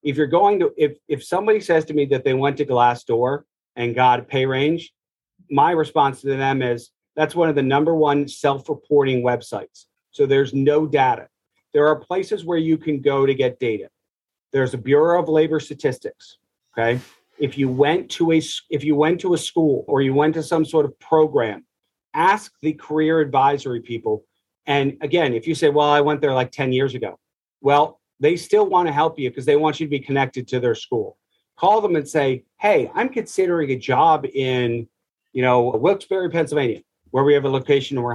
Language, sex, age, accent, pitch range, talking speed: English, male, 40-59, American, 130-165 Hz, 205 wpm